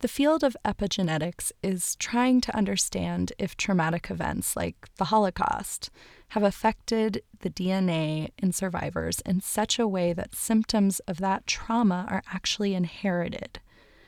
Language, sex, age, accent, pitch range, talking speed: English, female, 20-39, American, 180-220 Hz, 135 wpm